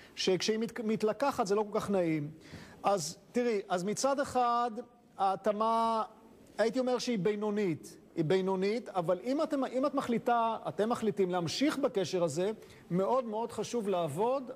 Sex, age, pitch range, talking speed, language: male, 40-59, 185-230 Hz, 145 wpm, Hebrew